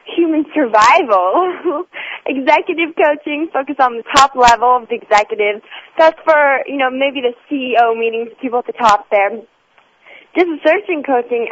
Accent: American